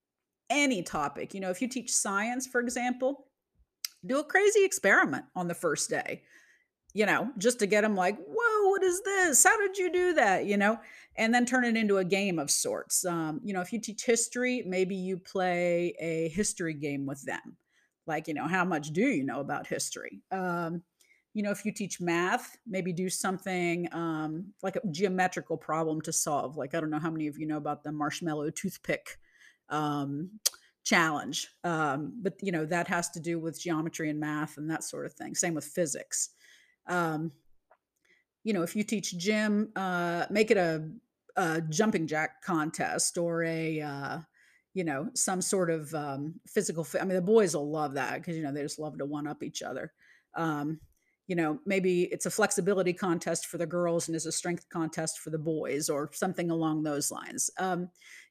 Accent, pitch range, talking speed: American, 160-210 Hz, 195 wpm